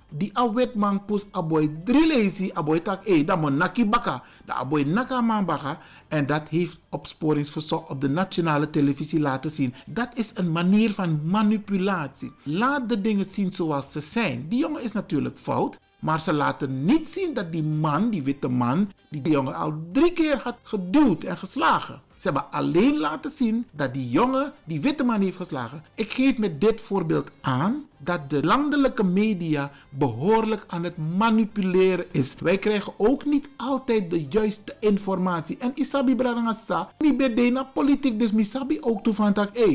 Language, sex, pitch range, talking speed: Dutch, male, 150-230 Hz, 170 wpm